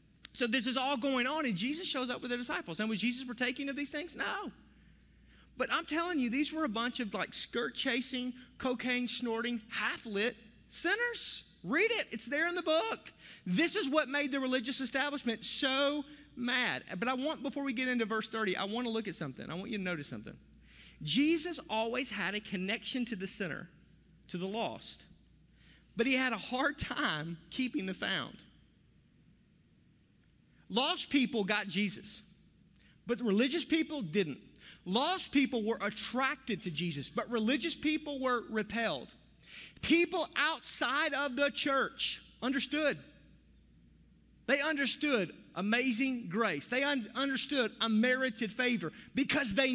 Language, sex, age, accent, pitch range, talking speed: English, male, 30-49, American, 215-280 Hz, 155 wpm